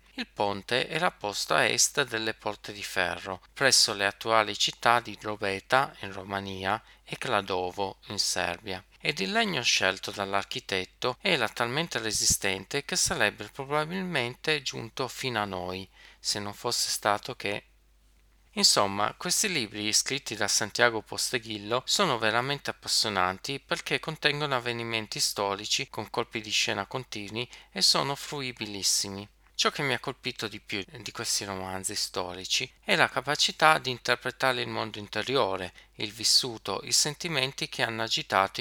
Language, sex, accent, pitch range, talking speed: Italian, male, native, 100-130 Hz, 140 wpm